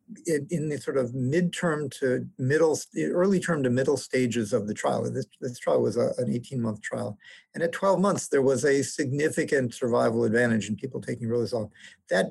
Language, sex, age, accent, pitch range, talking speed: English, male, 50-69, American, 120-165 Hz, 190 wpm